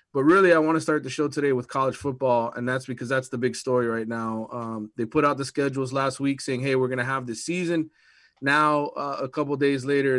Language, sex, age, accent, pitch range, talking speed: English, male, 30-49, American, 125-145 Hz, 260 wpm